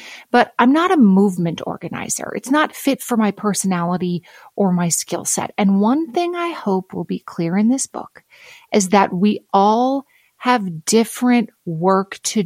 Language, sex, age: English, female, 30-49